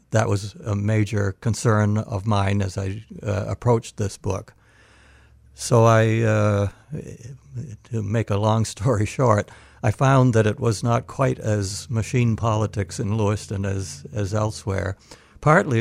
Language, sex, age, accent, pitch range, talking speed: English, male, 60-79, American, 95-115 Hz, 145 wpm